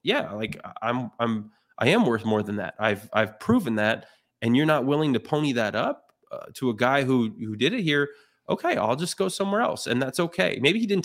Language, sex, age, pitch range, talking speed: English, male, 20-39, 110-135 Hz, 235 wpm